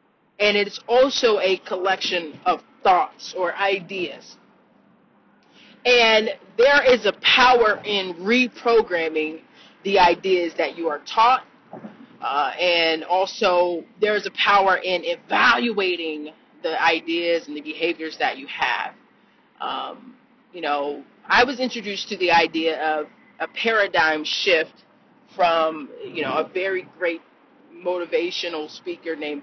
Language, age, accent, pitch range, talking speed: English, 30-49, American, 165-245 Hz, 125 wpm